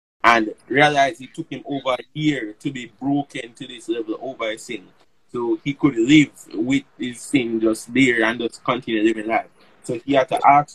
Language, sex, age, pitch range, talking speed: English, male, 20-39, 115-160 Hz, 195 wpm